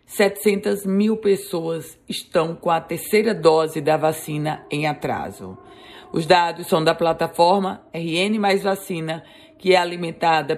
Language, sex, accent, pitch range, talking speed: Portuguese, female, Brazilian, 160-190 Hz, 130 wpm